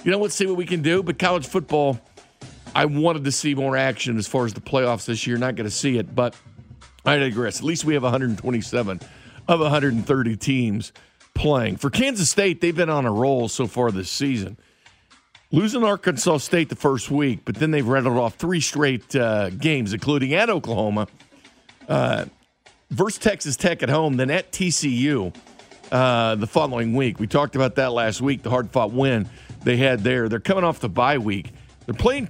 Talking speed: 195 wpm